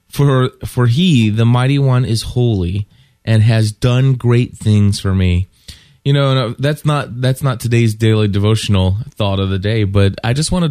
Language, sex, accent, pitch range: English, male, American, 100-125 Hz